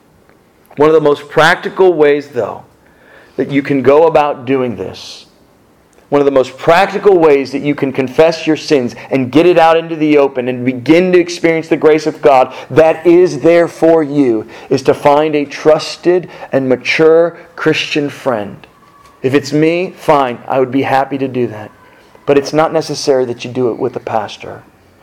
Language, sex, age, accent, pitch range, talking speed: English, male, 40-59, American, 125-160 Hz, 185 wpm